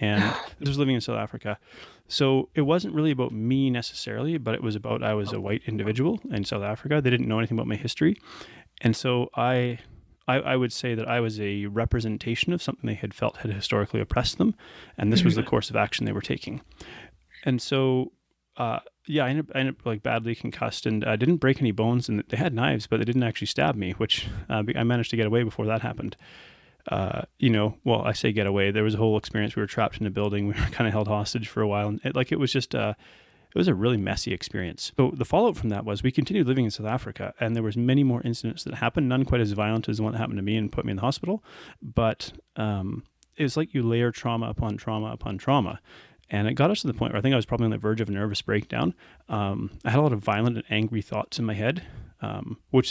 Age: 30-49